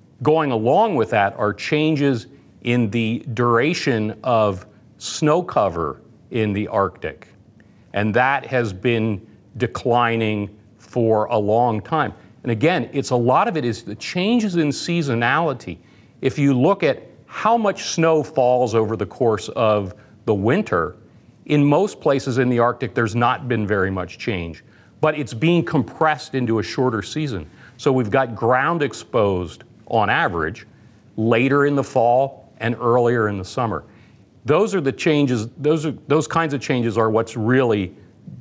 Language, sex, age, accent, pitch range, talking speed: English, male, 50-69, American, 110-135 Hz, 155 wpm